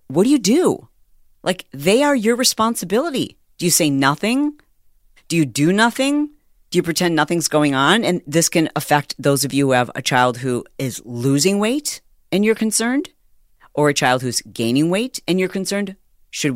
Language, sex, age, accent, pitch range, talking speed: English, female, 40-59, American, 130-170 Hz, 185 wpm